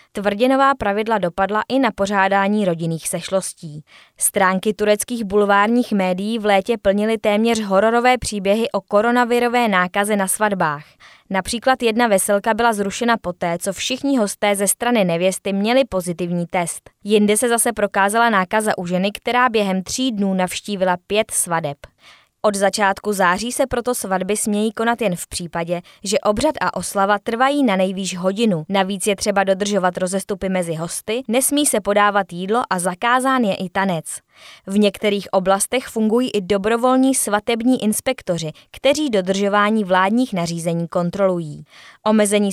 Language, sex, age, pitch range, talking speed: Czech, female, 20-39, 190-225 Hz, 140 wpm